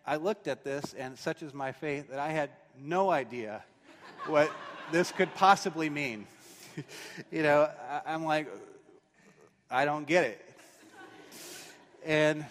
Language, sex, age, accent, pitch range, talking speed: English, male, 30-49, American, 115-165 Hz, 135 wpm